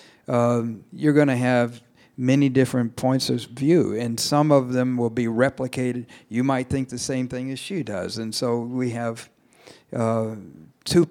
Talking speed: 175 wpm